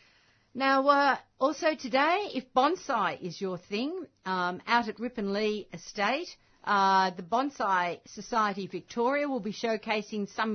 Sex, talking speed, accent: female, 130 wpm, Australian